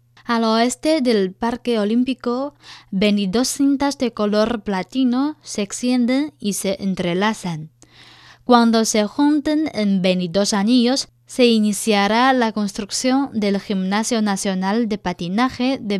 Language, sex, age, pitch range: Chinese, female, 10-29, 195-245 Hz